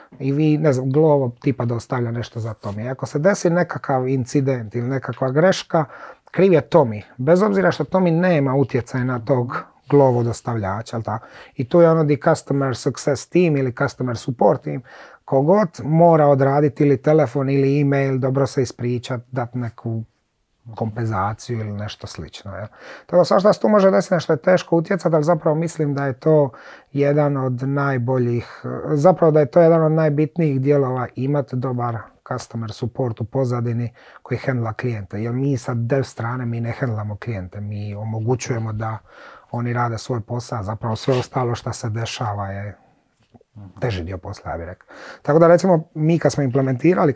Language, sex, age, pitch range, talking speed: Croatian, male, 30-49, 120-150 Hz, 165 wpm